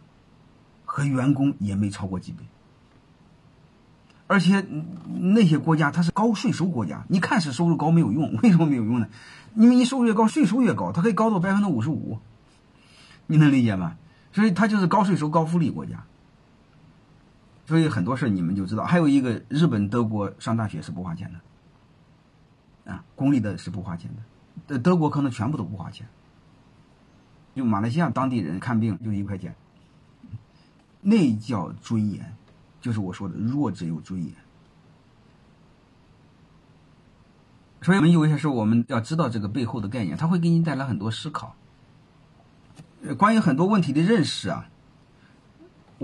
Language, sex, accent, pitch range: Chinese, male, native, 110-170 Hz